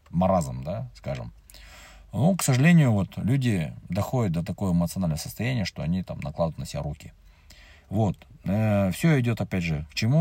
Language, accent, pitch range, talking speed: Russian, native, 85-120 Hz, 160 wpm